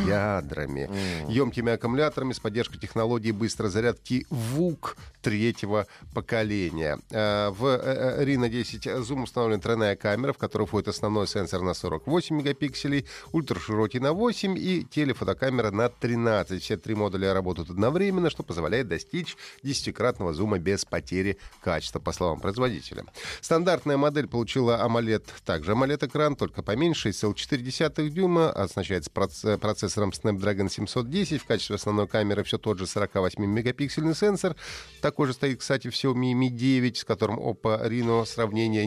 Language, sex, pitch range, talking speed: Russian, male, 105-140 Hz, 130 wpm